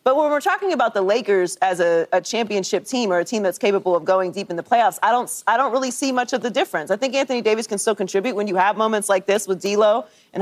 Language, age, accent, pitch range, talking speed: English, 30-49, American, 180-225 Hz, 280 wpm